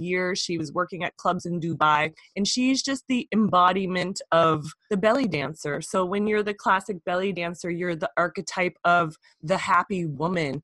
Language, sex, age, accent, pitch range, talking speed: French, female, 20-39, American, 160-205 Hz, 175 wpm